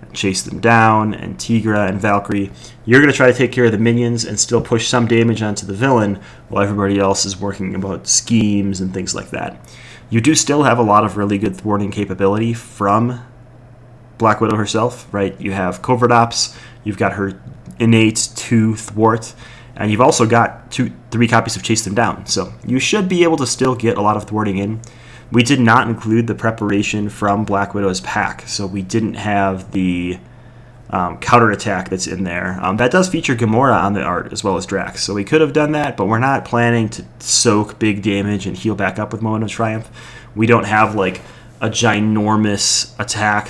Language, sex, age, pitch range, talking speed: English, male, 30-49, 105-120 Hz, 205 wpm